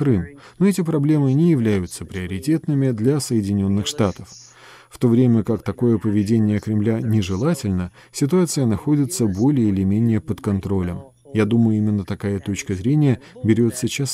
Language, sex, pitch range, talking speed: Russian, male, 100-135 Hz, 135 wpm